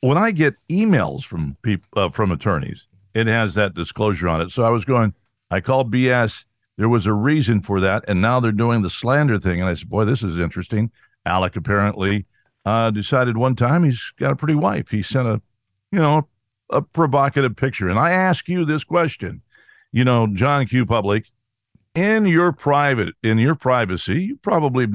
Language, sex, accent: English, male, American